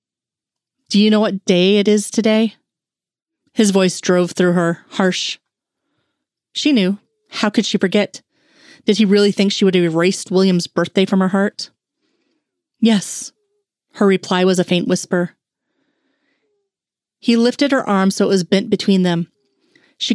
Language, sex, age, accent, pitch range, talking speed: English, female, 30-49, American, 190-230 Hz, 150 wpm